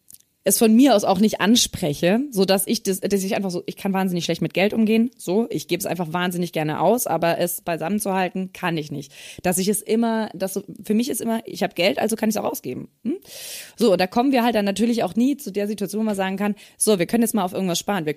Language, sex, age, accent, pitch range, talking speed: German, female, 20-39, German, 170-220 Hz, 275 wpm